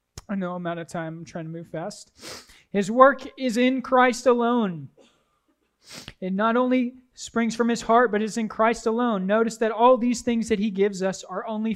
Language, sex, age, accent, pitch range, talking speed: English, male, 20-39, American, 180-230 Hz, 205 wpm